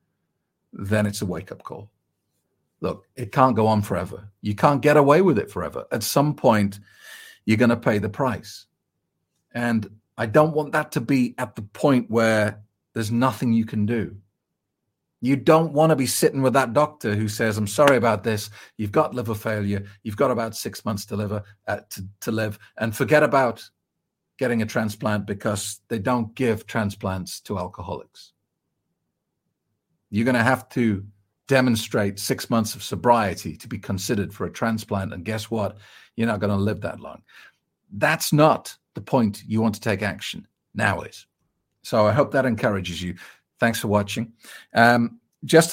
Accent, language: British, English